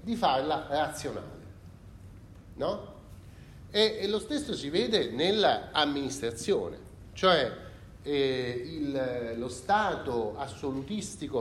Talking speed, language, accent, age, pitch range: 90 wpm, Italian, native, 40-59, 110-175 Hz